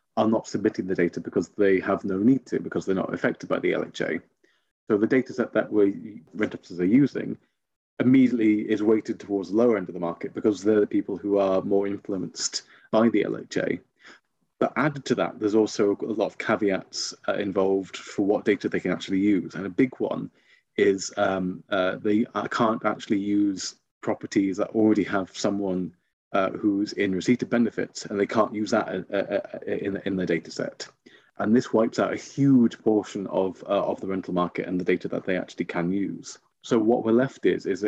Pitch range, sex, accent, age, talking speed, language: 95-115 Hz, male, British, 30-49, 200 wpm, English